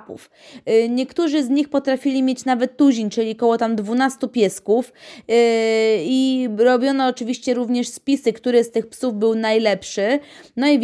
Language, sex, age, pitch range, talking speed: Polish, female, 20-39, 220-260 Hz, 145 wpm